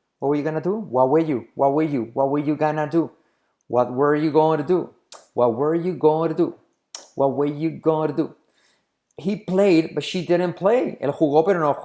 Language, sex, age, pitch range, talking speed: Spanish, male, 30-49, 125-165 Hz, 240 wpm